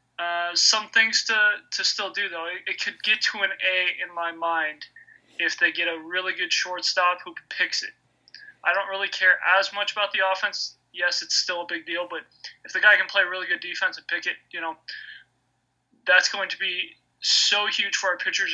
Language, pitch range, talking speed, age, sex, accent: English, 175-225 Hz, 215 wpm, 20-39, male, American